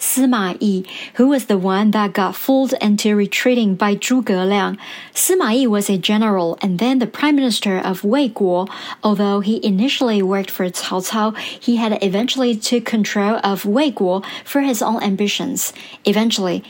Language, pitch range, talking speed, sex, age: English, 200-250 Hz, 170 wpm, male, 50-69